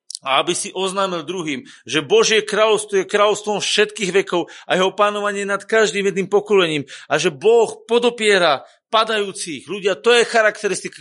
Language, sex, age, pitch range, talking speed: Slovak, male, 40-59, 175-230 Hz, 155 wpm